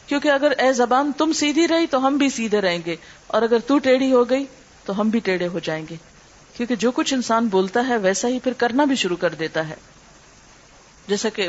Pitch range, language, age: 190-260 Hz, Urdu, 50-69